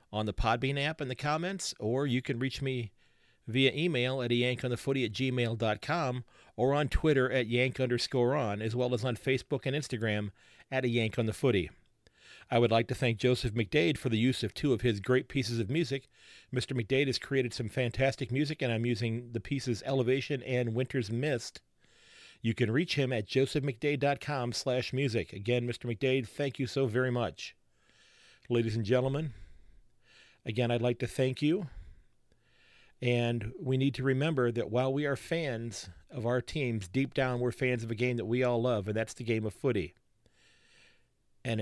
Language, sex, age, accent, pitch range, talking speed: English, male, 40-59, American, 115-130 Hz, 175 wpm